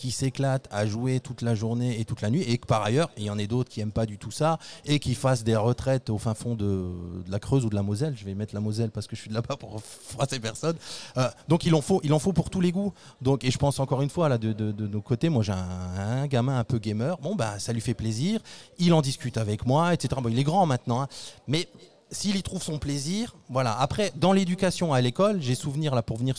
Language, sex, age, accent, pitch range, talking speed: French, male, 30-49, French, 115-150 Hz, 285 wpm